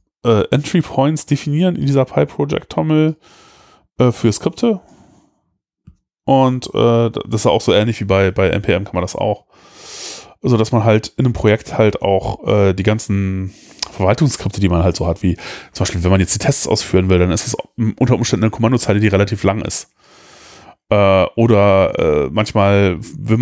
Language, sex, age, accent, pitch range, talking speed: German, male, 20-39, German, 95-120 Hz, 175 wpm